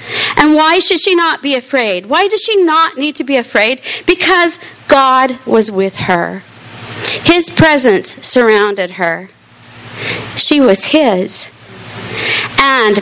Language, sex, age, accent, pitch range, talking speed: English, female, 40-59, American, 185-280 Hz, 130 wpm